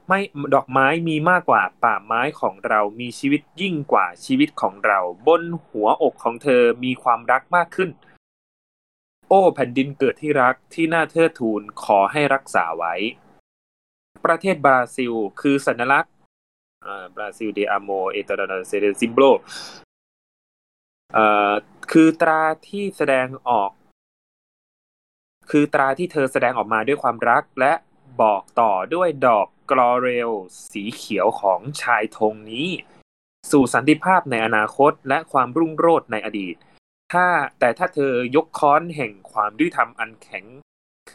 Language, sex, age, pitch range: Thai, male, 20-39, 110-160 Hz